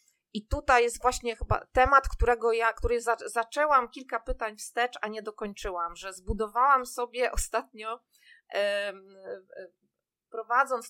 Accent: native